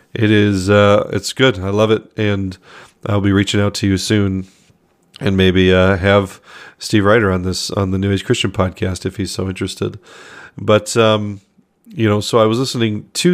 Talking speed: 195 wpm